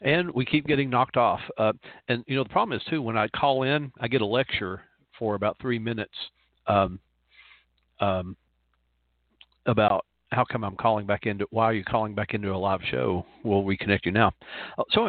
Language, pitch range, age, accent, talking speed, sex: English, 85-115 Hz, 50-69, American, 205 wpm, male